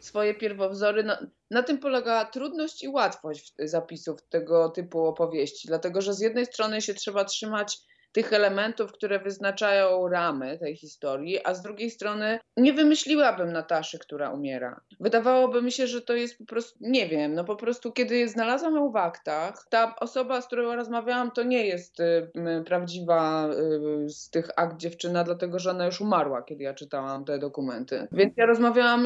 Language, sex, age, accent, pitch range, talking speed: Polish, female, 20-39, native, 175-230 Hz, 165 wpm